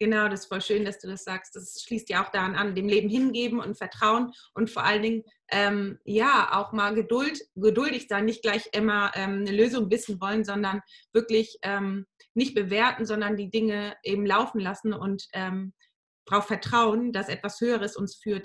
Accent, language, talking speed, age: German, German, 190 wpm, 30-49